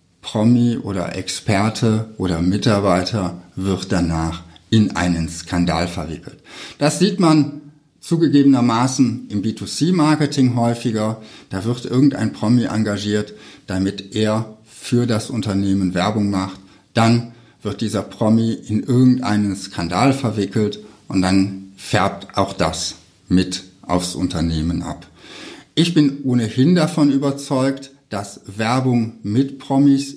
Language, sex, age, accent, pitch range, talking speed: German, male, 60-79, German, 95-125 Hz, 110 wpm